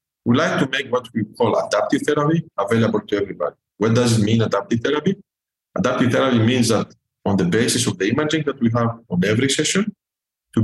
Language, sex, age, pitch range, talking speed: English, male, 50-69, 110-150 Hz, 195 wpm